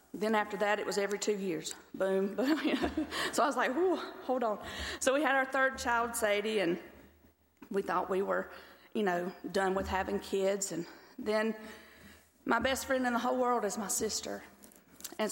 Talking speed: 190 wpm